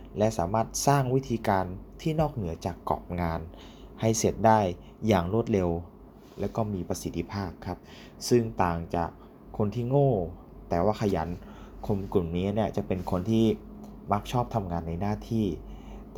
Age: 20-39